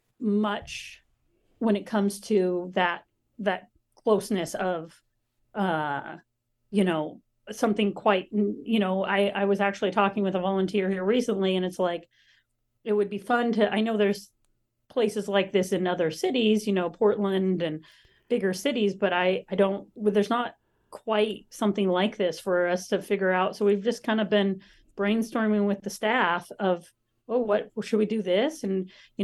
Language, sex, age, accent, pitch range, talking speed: English, female, 40-59, American, 180-210 Hz, 170 wpm